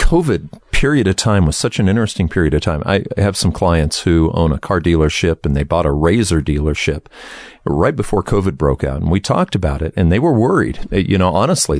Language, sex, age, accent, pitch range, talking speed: English, male, 50-69, American, 80-100 Hz, 220 wpm